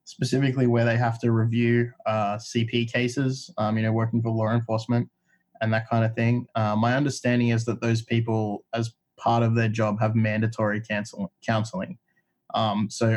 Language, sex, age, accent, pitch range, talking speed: English, male, 20-39, Australian, 110-125 Hz, 180 wpm